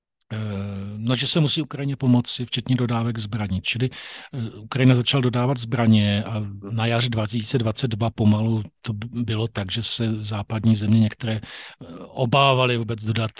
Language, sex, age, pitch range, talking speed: Slovak, male, 40-59, 110-125 Hz, 135 wpm